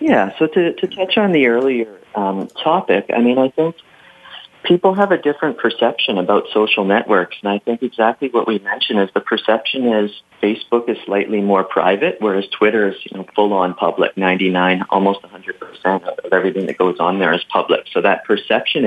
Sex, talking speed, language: male, 205 wpm, English